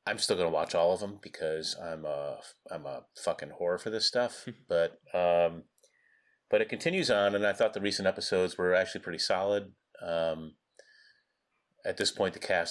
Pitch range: 85-100 Hz